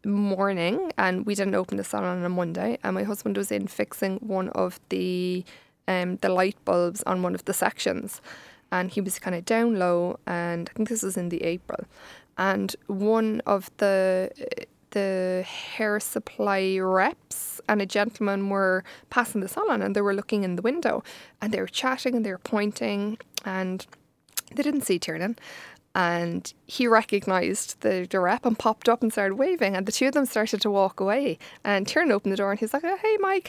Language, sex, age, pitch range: English, female, 20-39, 190-225 Hz